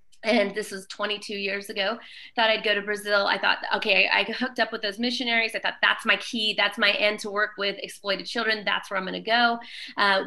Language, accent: English, American